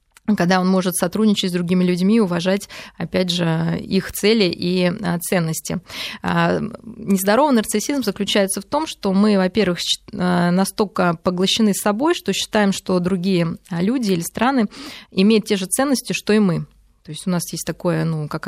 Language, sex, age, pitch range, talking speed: Russian, female, 20-39, 170-210 Hz, 155 wpm